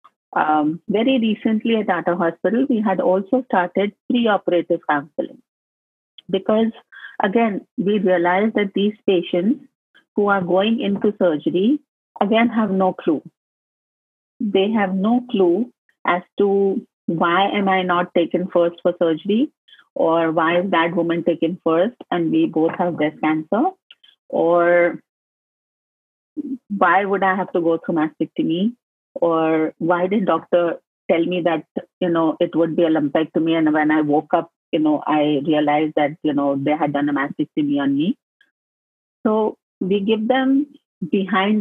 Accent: Indian